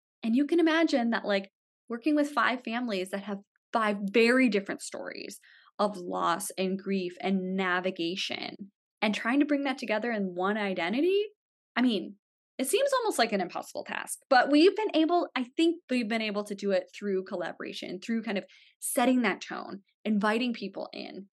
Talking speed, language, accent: 175 wpm, English, American